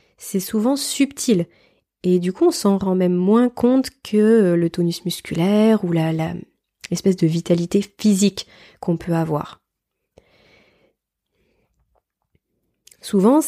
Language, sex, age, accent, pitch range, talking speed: French, female, 20-39, French, 175-225 Hz, 120 wpm